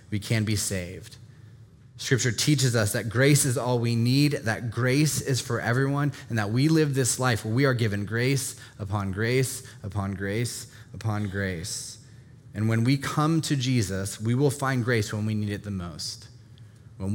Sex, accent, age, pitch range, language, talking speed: male, American, 20-39, 105-125 Hz, English, 180 wpm